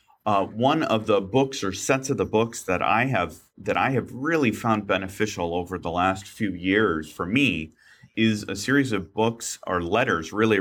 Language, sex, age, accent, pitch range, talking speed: English, male, 40-59, American, 90-115 Hz, 190 wpm